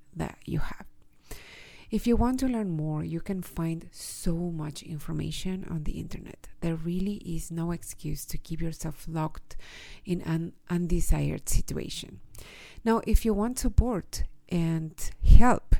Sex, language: female, English